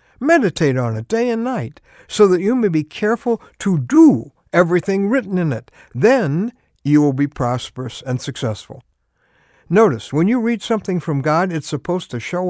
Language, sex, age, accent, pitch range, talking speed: English, male, 60-79, American, 135-190 Hz, 175 wpm